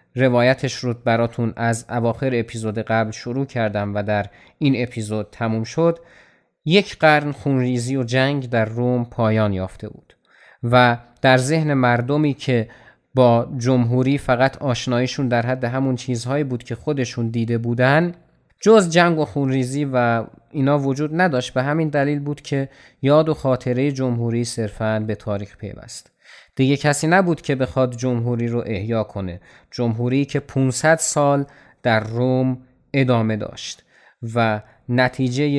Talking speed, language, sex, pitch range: 140 wpm, Persian, male, 115-145 Hz